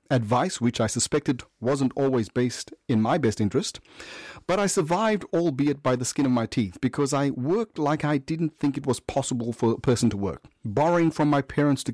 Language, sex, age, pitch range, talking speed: English, male, 30-49, 120-145 Hz, 205 wpm